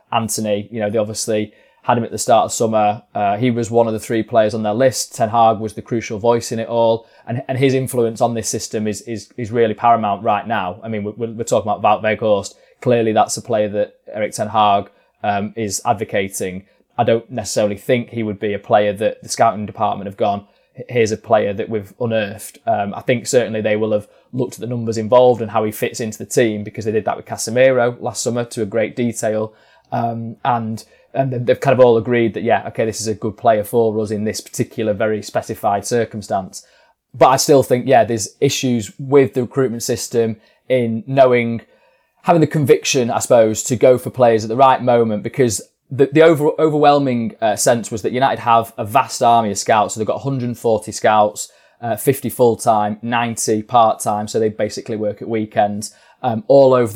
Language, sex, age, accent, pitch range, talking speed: English, male, 20-39, British, 110-125 Hz, 210 wpm